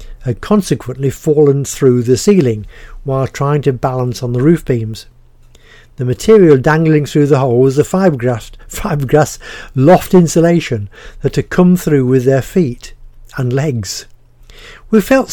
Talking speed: 145 wpm